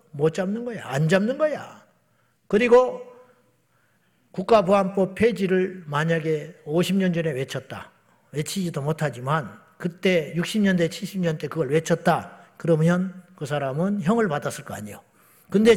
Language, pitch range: Korean, 155-215 Hz